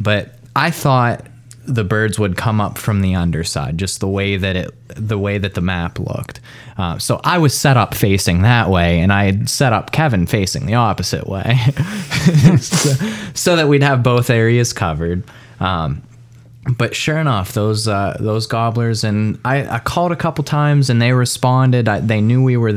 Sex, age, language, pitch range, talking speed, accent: male, 20-39, English, 100-130 Hz, 190 wpm, American